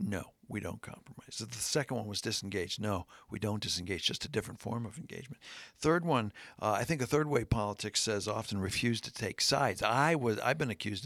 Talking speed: 220 wpm